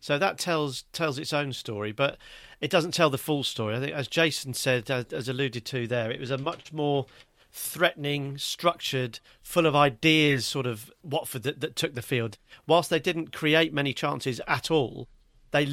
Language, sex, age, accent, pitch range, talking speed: English, male, 40-59, British, 125-150 Hz, 195 wpm